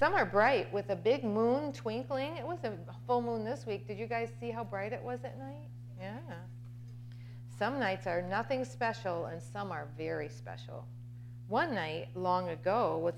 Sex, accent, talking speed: female, American, 185 wpm